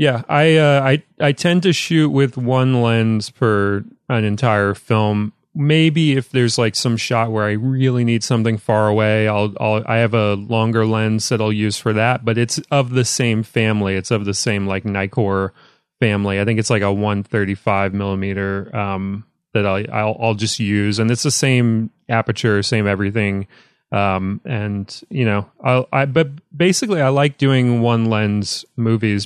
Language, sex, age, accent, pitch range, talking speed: English, male, 30-49, American, 105-125 Hz, 185 wpm